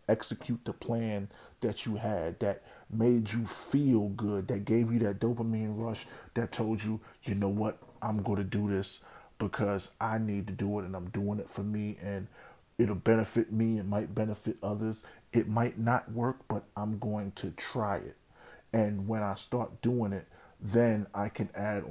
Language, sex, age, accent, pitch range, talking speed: English, male, 40-59, American, 100-115 Hz, 185 wpm